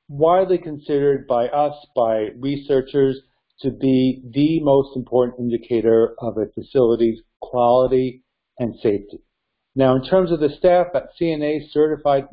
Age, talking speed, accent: 60-79, 130 wpm, American